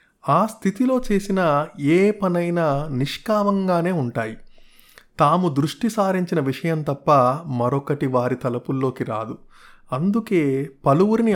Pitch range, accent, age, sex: 135-190 Hz, native, 30-49, male